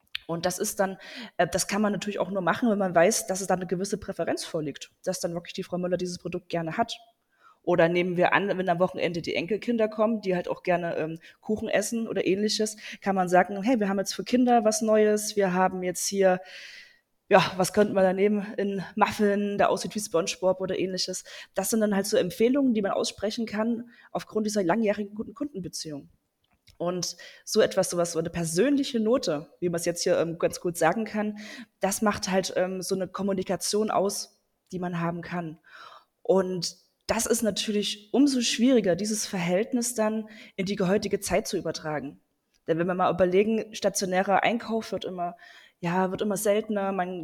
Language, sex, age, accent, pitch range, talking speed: German, female, 20-39, German, 180-215 Hz, 190 wpm